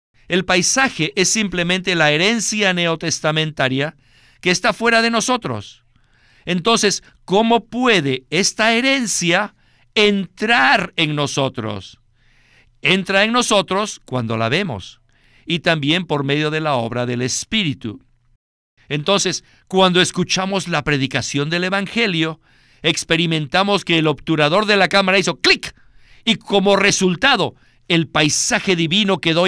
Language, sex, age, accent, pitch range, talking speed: Spanish, male, 50-69, Mexican, 135-195 Hz, 120 wpm